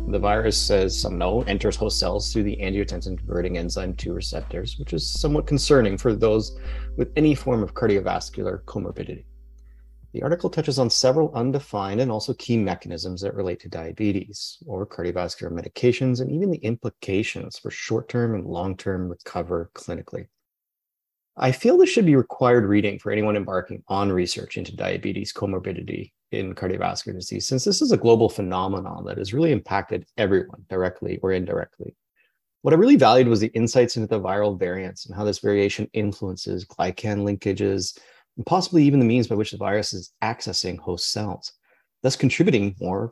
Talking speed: 165 wpm